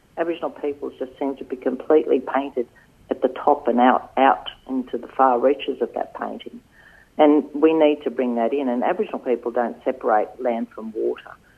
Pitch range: 120-145 Hz